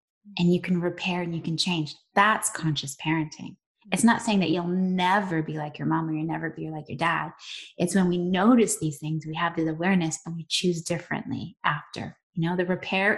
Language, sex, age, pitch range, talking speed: English, female, 20-39, 165-205 Hz, 215 wpm